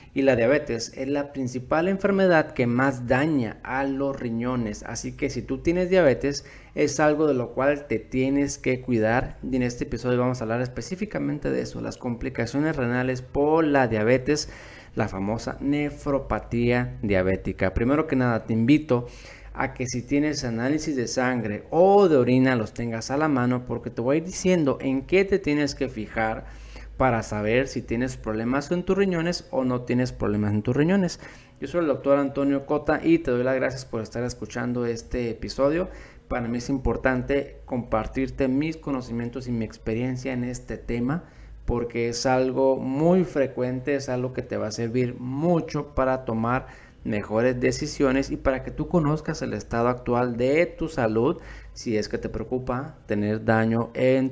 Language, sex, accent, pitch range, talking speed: Spanish, male, Mexican, 115-140 Hz, 175 wpm